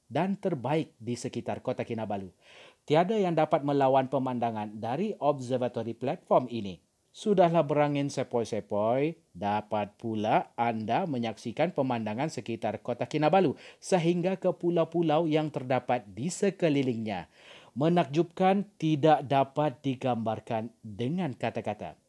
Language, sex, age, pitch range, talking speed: Malay, male, 40-59, 120-165 Hz, 105 wpm